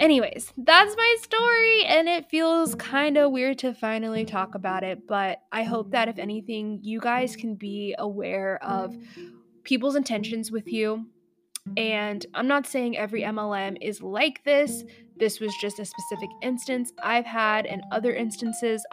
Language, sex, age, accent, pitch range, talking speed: English, female, 10-29, American, 205-255 Hz, 160 wpm